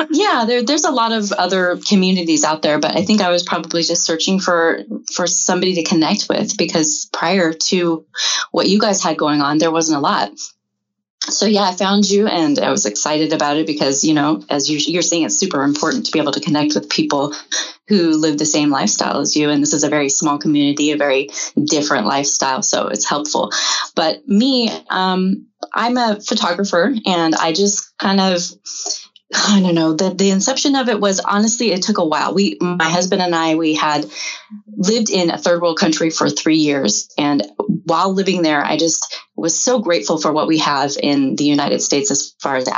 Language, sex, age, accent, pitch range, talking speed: English, female, 20-39, American, 145-195 Hz, 205 wpm